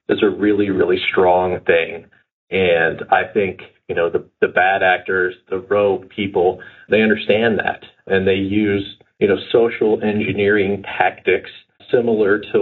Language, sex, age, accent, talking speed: English, male, 40-59, American, 145 wpm